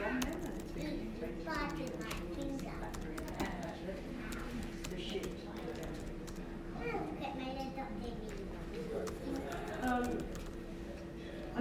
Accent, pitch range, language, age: British, 180-220 Hz, English, 40-59